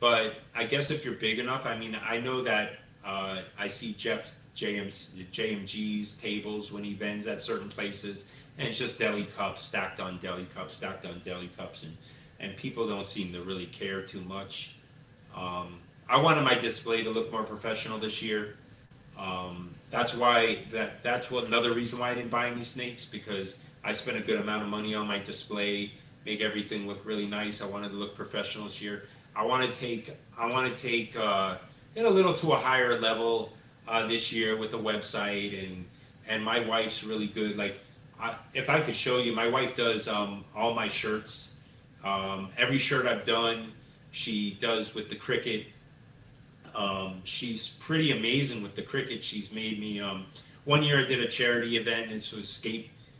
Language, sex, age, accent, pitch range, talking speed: English, male, 30-49, American, 105-125 Hz, 190 wpm